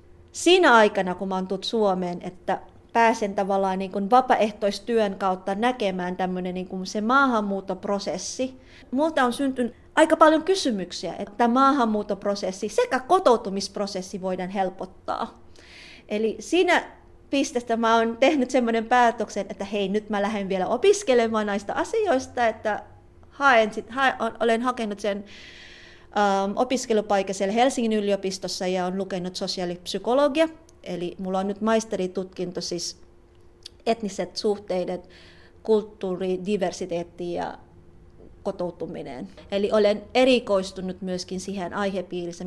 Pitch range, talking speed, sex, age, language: 185-245 Hz, 115 wpm, female, 30-49, Finnish